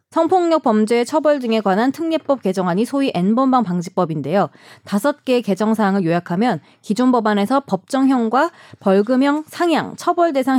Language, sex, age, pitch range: Korean, female, 30-49, 190-265 Hz